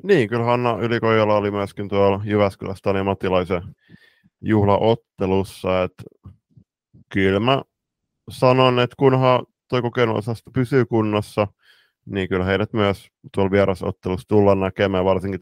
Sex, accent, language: male, native, Finnish